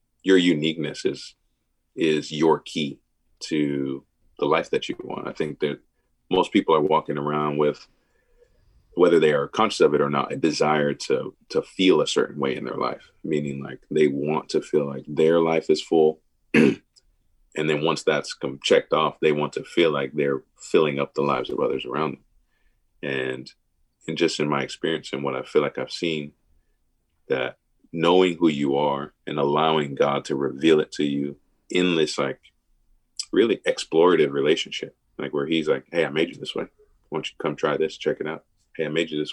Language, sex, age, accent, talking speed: English, male, 40-59, American, 195 wpm